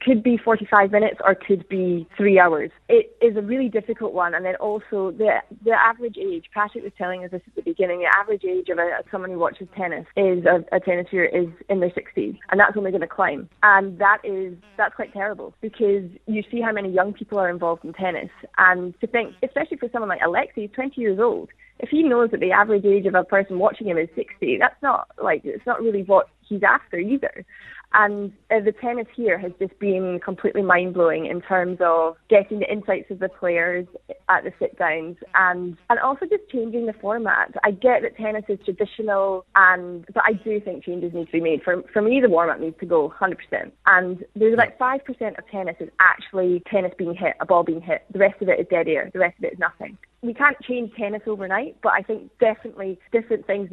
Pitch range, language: 185-230 Hz, English